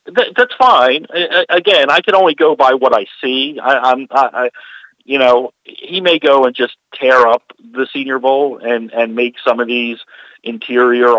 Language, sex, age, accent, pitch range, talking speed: English, male, 50-69, American, 105-150 Hz, 180 wpm